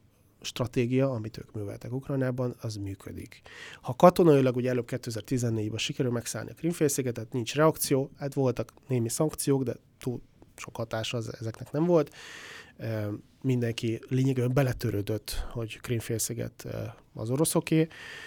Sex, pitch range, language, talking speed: male, 115-145 Hz, Hungarian, 130 wpm